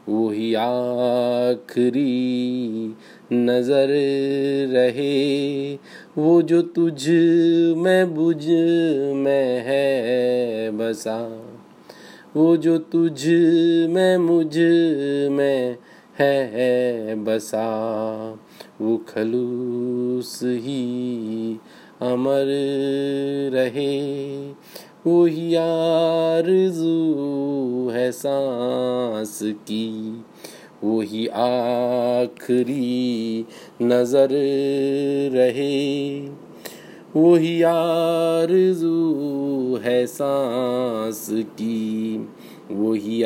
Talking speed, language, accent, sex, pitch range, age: 55 wpm, Hindi, native, male, 120-145 Hz, 20-39